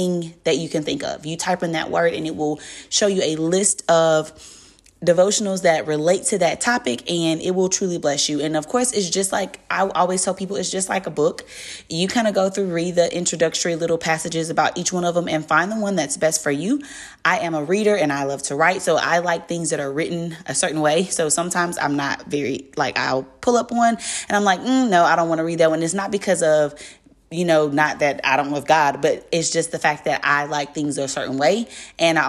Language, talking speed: English, 250 wpm